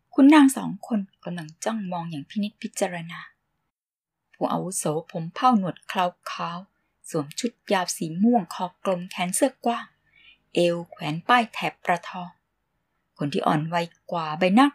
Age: 20-39